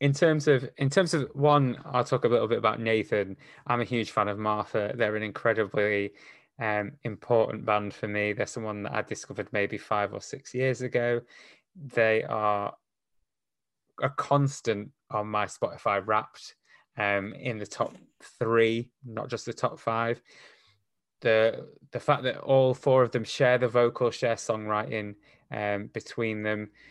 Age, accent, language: 20-39, British, English